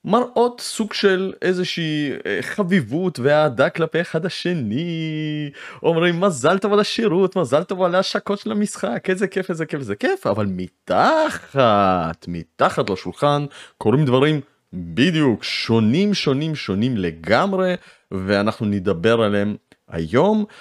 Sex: male